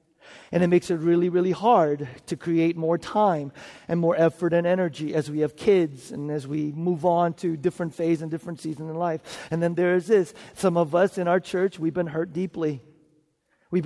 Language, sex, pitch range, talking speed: English, male, 165-195 Hz, 210 wpm